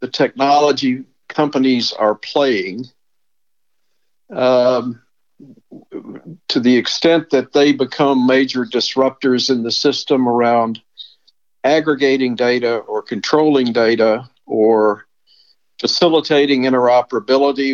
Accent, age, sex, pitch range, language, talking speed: American, 60-79, male, 115-135 Hz, English, 90 wpm